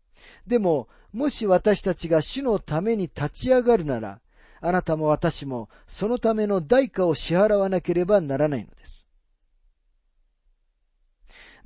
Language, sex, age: Japanese, male, 40-59